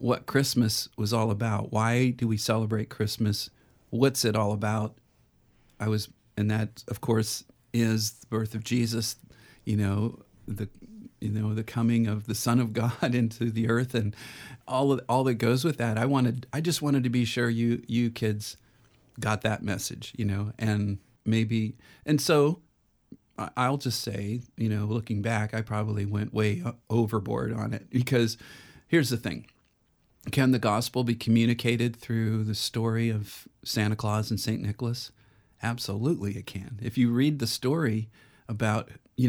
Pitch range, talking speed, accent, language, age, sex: 110-125 Hz, 170 wpm, American, English, 40-59, male